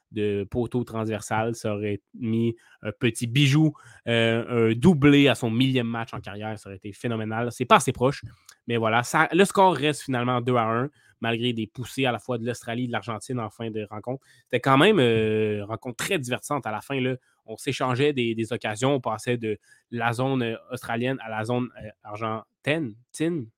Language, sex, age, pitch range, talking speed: French, male, 20-39, 110-135 Hz, 195 wpm